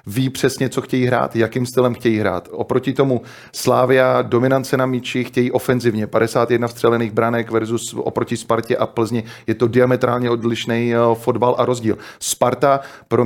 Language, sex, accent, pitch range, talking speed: Czech, male, native, 115-130 Hz, 155 wpm